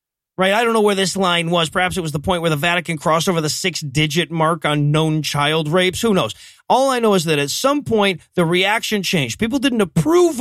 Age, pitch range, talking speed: 30-49, 175-250 Hz, 240 wpm